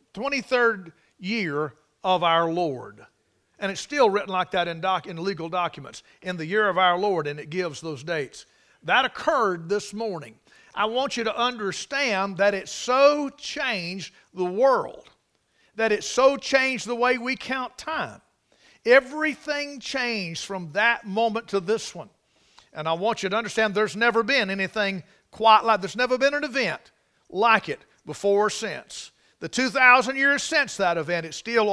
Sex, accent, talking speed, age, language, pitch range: male, American, 170 wpm, 50-69, English, 180-250 Hz